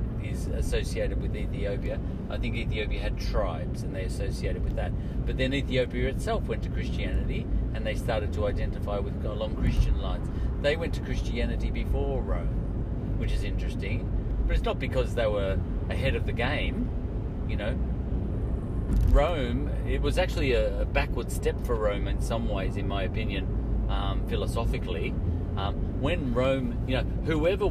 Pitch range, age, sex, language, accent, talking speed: 95-115 Hz, 40-59, male, English, Australian, 160 wpm